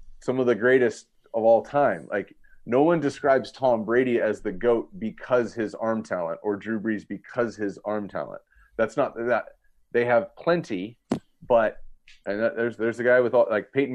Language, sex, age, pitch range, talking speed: English, male, 30-49, 110-140 Hz, 190 wpm